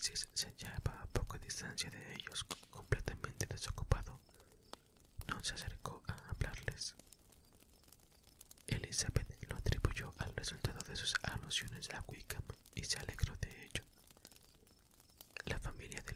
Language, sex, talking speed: Spanish, male, 120 wpm